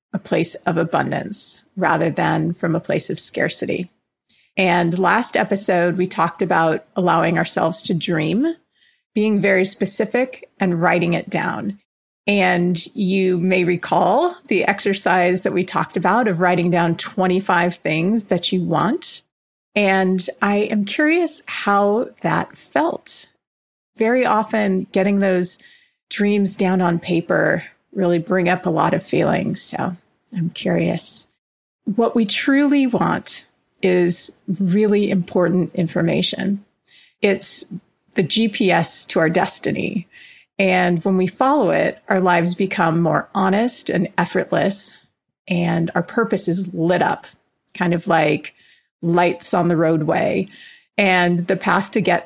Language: English